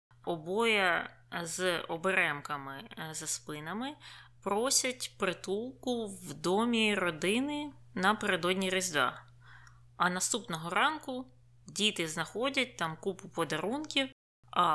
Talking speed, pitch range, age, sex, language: 85 wpm, 160-205 Hz, 20-39, female, Ukrainian